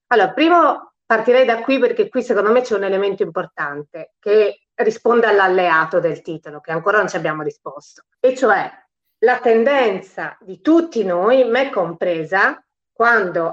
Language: Italian